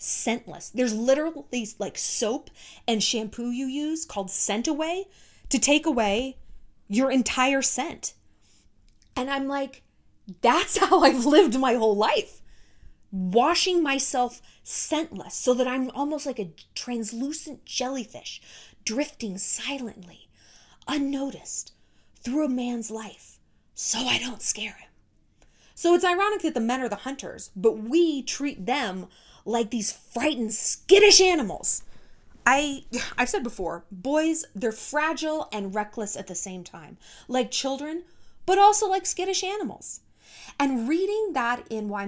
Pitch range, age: 210-295 Hz, 20-39